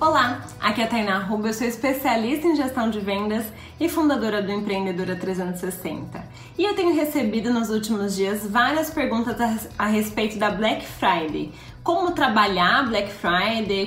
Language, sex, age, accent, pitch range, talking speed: Portuguese, female, 20-39, Brazilian, 205-270 Hz, 155 wpm